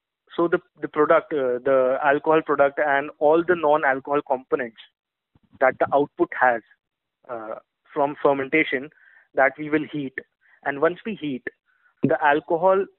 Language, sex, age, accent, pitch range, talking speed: English, male, 20-39, Indian, 135-165 Hz, 140 wpm